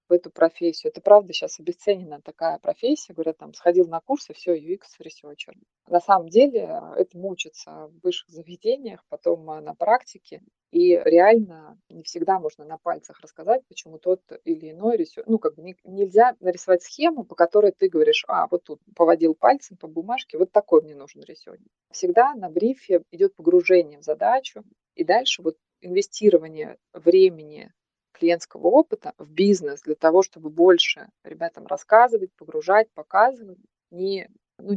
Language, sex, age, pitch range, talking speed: Russian, female, 20-39, 165-220 Hz, 155 wpm